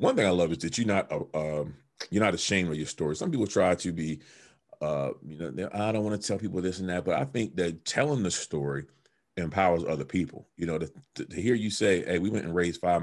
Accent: American